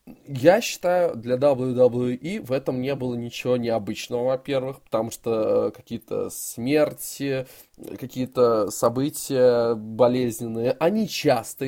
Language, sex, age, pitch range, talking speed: Russian, male, 20-39, 120-155 Hz, 105 wpm